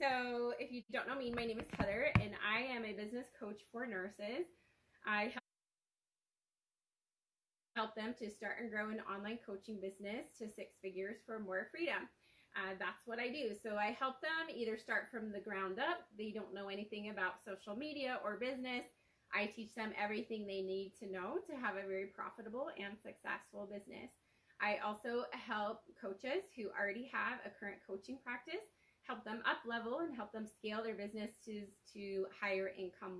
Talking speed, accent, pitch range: 180 wpm, American, 200-245 Hz